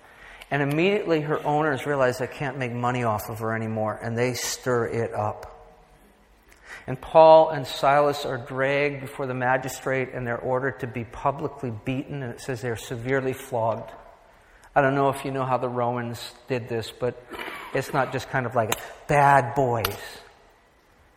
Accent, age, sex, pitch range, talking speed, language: American, 50-69, male, 115-130 Hz, 170 wpm, English